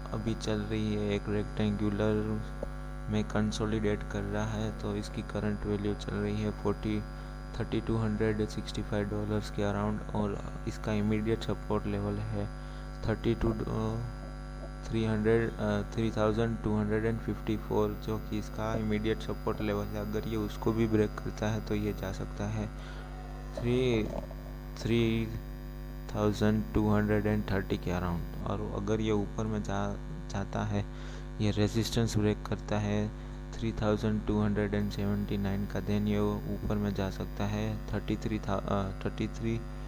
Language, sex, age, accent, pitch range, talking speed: Hindi, male, 20-39, native, 105-110 Hz, 130 wpm